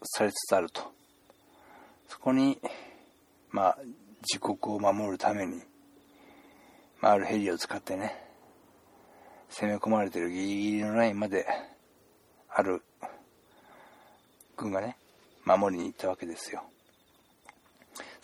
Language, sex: Japanese, male